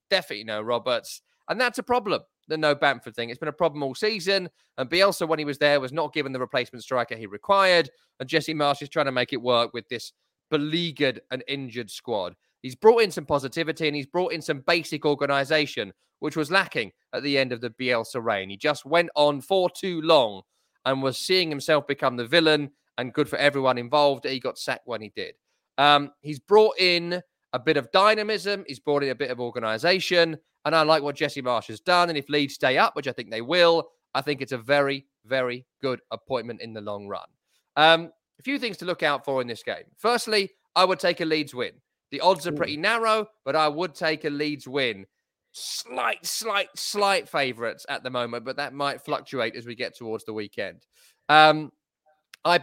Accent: British